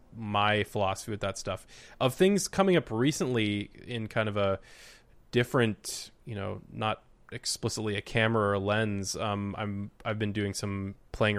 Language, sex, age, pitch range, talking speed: English, male, 20-39, 100-115 Hz, 165 wpm